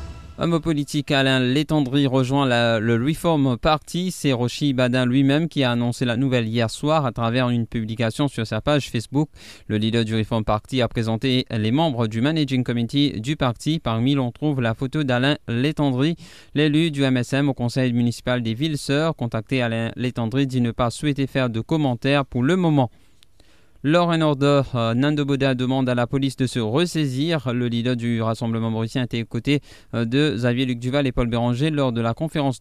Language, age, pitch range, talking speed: English, 20-39, 115-145 Hz, 190 wpm